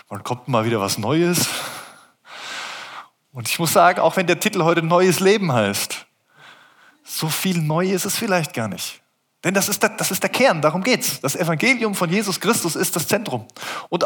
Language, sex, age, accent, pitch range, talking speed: German, male, 20-39, German, 140-190 Hz, 195 wpm